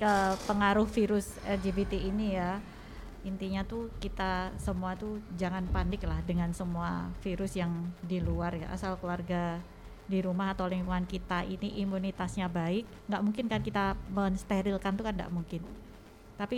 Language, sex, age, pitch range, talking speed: Indonesian, female, 20-39, 180-205 Hz, 145 wpm